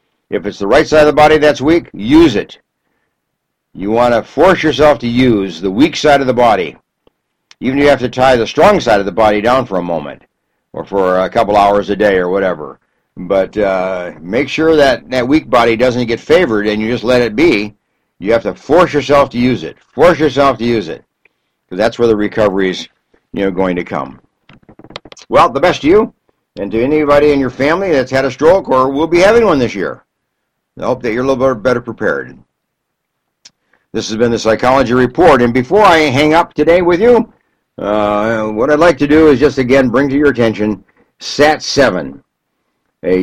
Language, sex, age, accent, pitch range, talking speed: English, male, 60-79, American, 105-145 Hz, 205 wpm